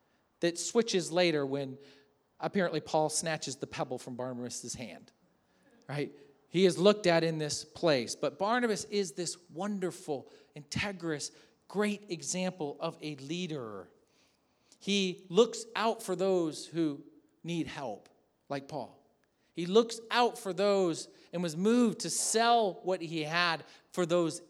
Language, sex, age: English, male, 40-59